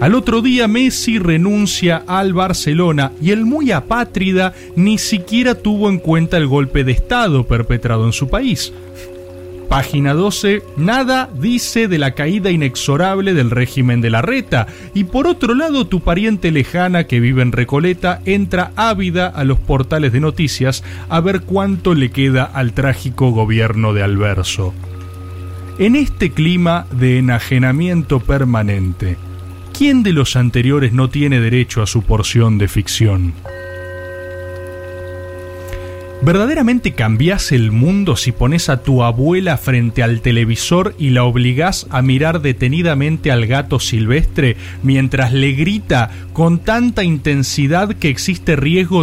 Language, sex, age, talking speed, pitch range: Spanish, male, 30-49, 140 wpm, 115-185 Hz